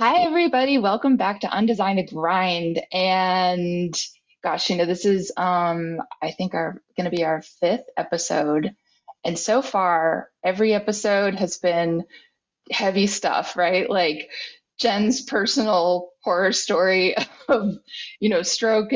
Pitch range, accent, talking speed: 175-210 Hz, American, 135 wpm